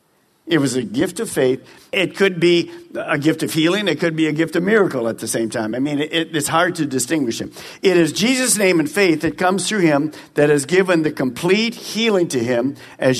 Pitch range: 130-180 Hz